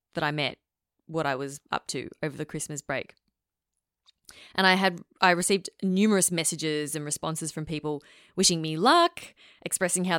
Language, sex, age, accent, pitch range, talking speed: English, female, 20-39, Australian, 155-185 Hz, 165 wpm